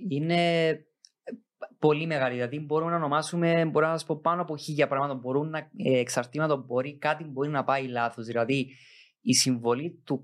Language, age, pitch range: Greek, 20-39, 125-160 Hz